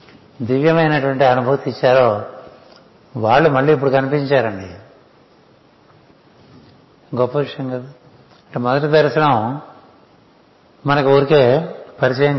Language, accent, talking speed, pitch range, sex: Telugu, native, 75 wpm, 125-140 Hz, male